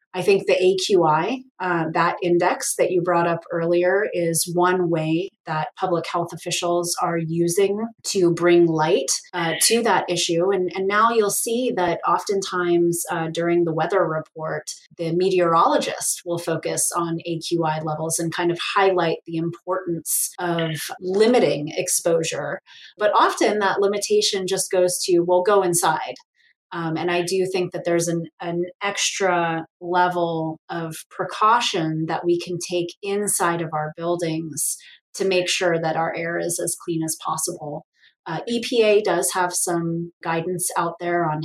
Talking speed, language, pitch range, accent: 155 wpm, English, 165-185 Hz, American